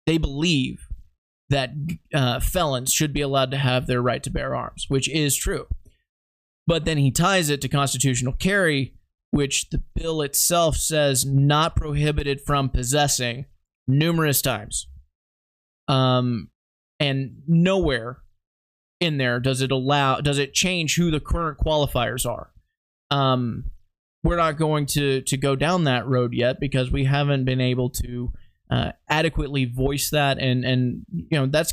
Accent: American